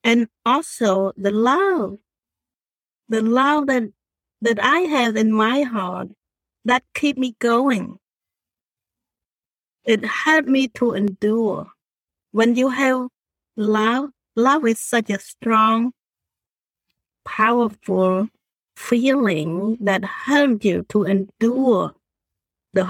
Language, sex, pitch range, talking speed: English, female, 195-250 Hz, 100 wpm